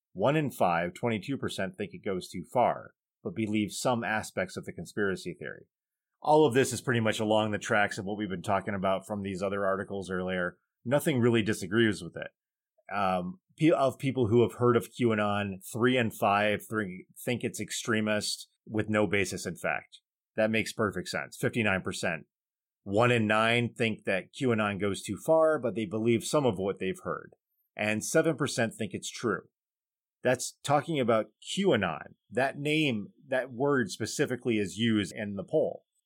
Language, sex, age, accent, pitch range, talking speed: English, male, 30-49, American, 105-135 Hz, 170 wpm